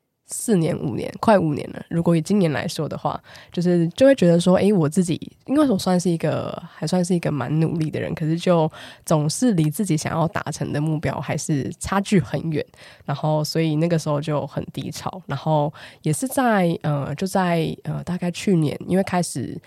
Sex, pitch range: female, 155-180 Hz